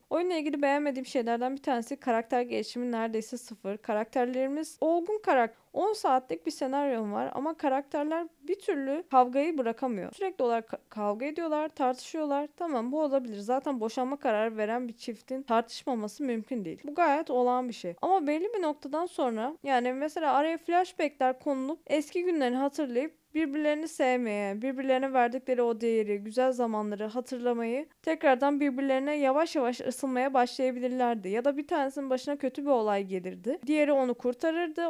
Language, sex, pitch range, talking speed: Turkish, female, 240-295 Hz, 150 wpm